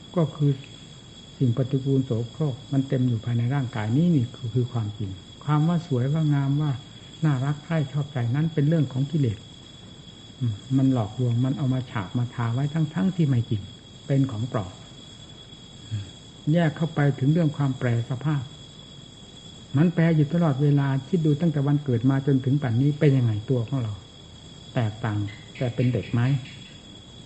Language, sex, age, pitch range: Thai, male, 60-79, 120-150 Hz